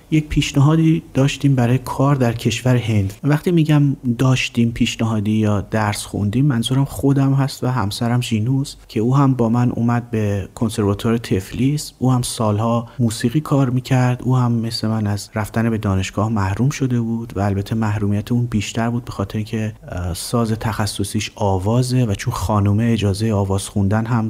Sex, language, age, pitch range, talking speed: male, Persian, 30-49, 105-130 Hz, 165 wpm